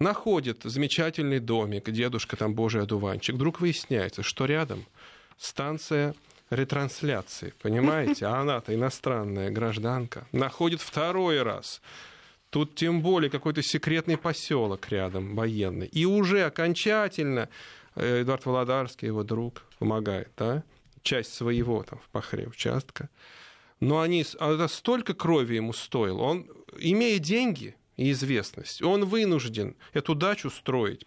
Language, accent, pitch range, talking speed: Russian, native, 115-160 Hz, 120 wpm